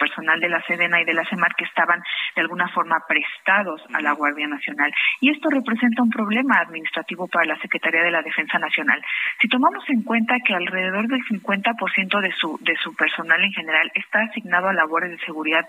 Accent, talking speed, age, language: Mexican, 200 wpm, 40-59, Spanish